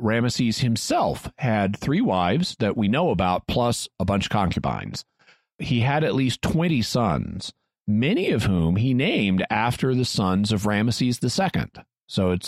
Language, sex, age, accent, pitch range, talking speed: English, male, 40-59, American, 100-135 Hz, 160 wpm